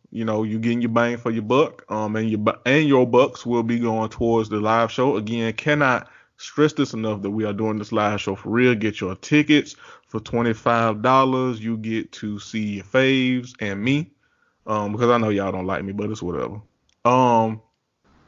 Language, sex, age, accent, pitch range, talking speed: English, male, 20-39, American, 110-135 Hz, 210 wpm